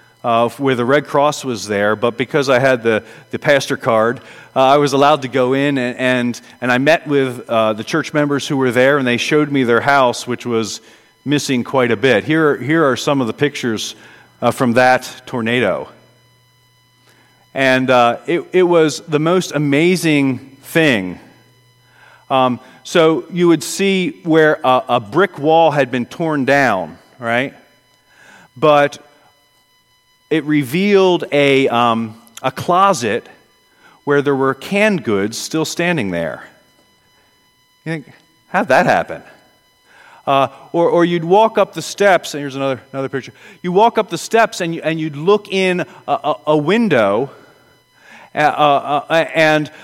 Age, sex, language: 40-59, male, English